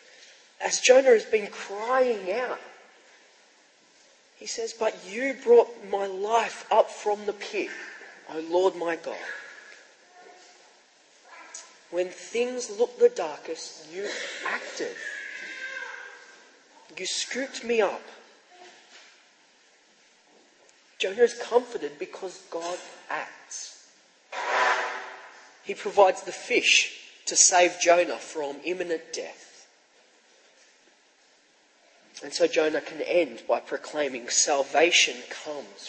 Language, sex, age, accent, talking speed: English, male, 40-59, Australian, 95 wpm